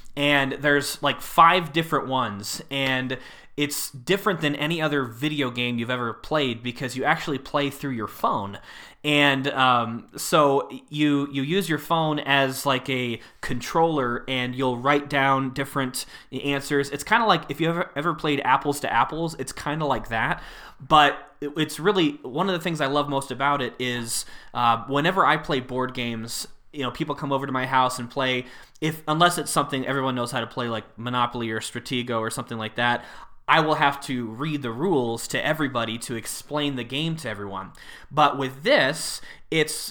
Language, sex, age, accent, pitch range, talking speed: English, male, 20-39, American, 125-150 Hz, 185 wpm